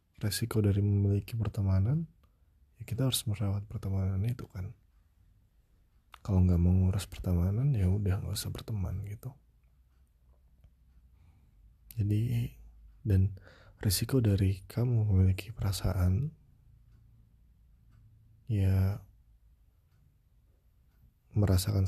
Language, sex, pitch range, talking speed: Indonesian, male, 75-110 Hz, 80 wpm